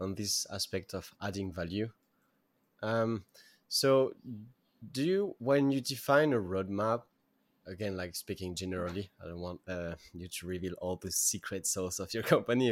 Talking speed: 155 wpm